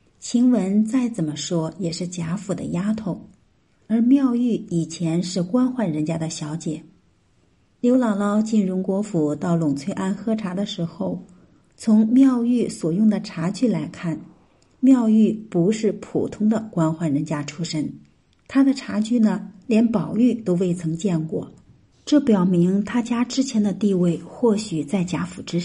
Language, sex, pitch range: Chinese, female, 170-230 Hz